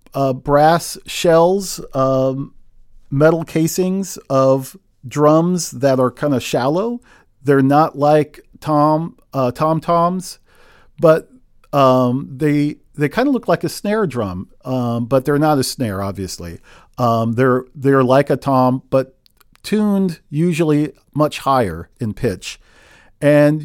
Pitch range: 130-170 Hz